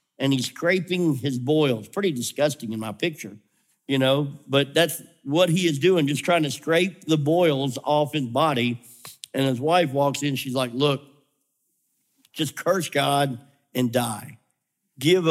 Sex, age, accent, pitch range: male, 50-69, American, 140-195 Hz